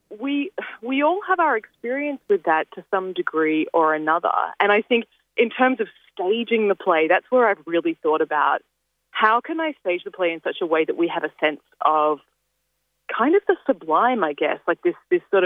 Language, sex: English, female